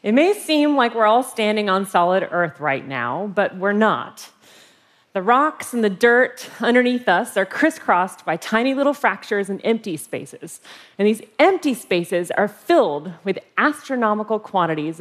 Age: 30-49